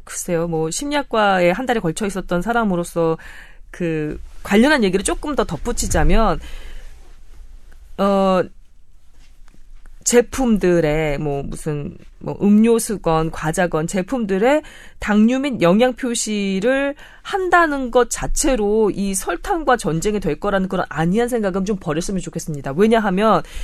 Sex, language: female, Korean